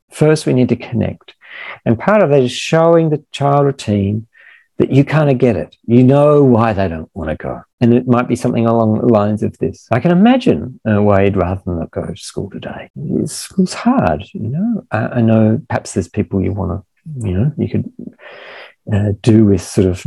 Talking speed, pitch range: 220 wpm, 105-145 Hz